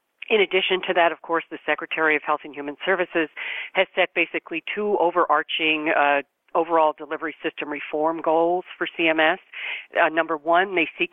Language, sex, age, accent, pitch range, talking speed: English, female, 50-69, American, 150-170 Hz, 165 wpm